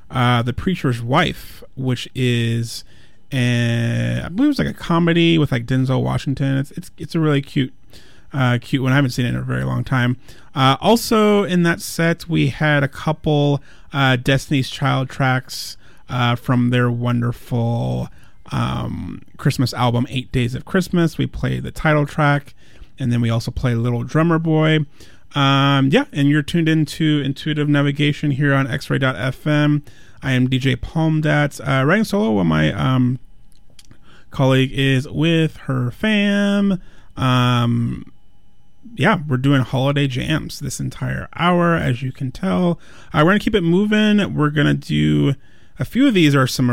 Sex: male